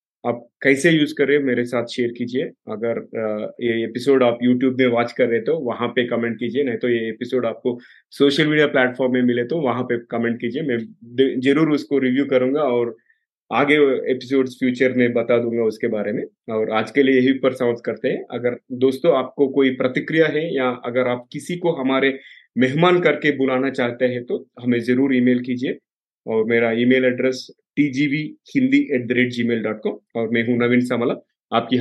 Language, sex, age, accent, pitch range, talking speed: Hindi, male, 30-49, native, 120-140 Hz, 180 wpm